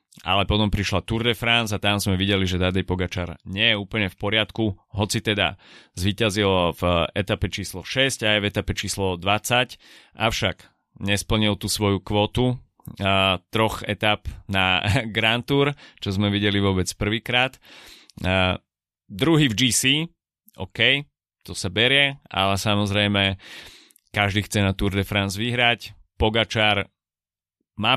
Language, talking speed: Slovak, 135 wpm